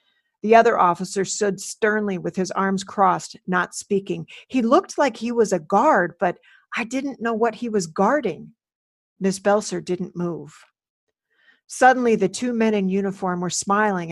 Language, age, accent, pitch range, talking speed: English, 50-69, American, 185-220 Hz, 160 wpm